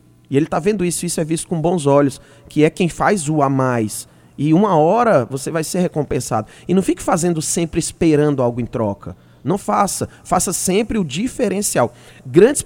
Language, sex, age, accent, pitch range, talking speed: Portuguese, male, 20-39, Brazilian, 135-185 Hz, 200 wpm